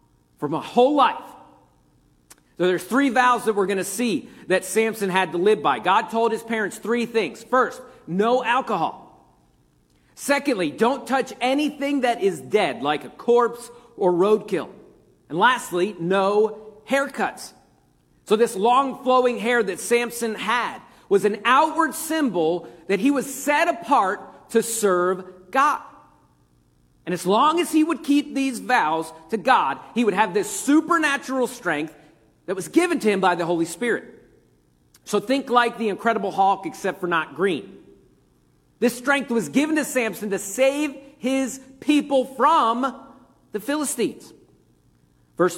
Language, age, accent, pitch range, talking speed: English, 40-59, American, 180-265 Hz, 150 wpm